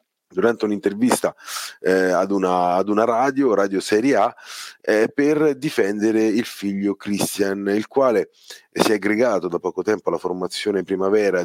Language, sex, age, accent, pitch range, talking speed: Italian, male, 30-49, native, 95-115 Hz, 135 wpm